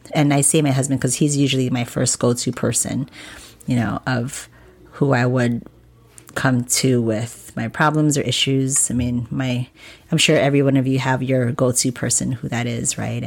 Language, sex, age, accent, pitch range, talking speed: English, female, 30-49, American, 130-150 Hz, 190 wpm